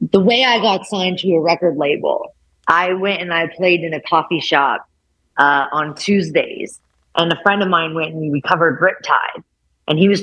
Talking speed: 205 wpm